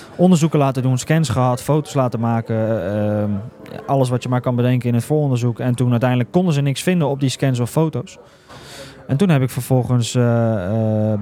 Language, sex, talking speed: Dutch, male, 200 wpm